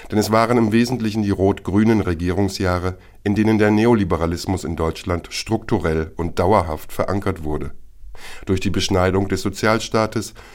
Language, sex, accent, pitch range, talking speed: German, male, German, 90-110 Hz, 135 wpm